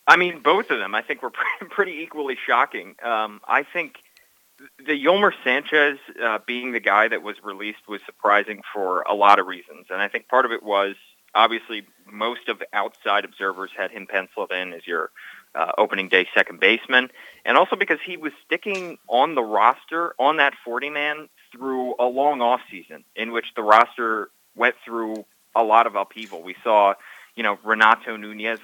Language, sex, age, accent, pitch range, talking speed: English, male, 30-49, American, 110-145 Hz, 180 wpm